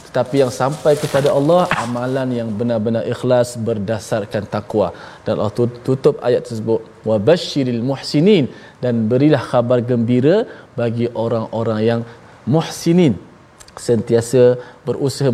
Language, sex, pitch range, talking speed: Malayalam, male, 115-145 Hz, 115 wpm